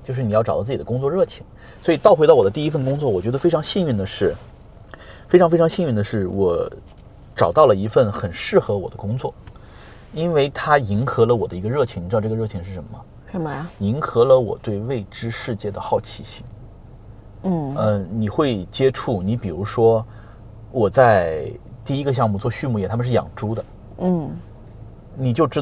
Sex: male